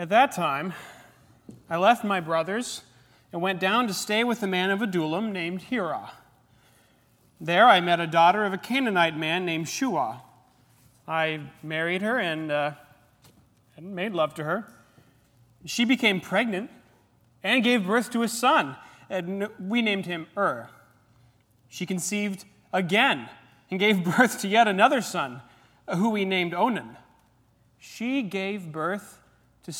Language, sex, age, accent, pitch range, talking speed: English, male, 30-49, American, 125-200 Hz, 145 wpm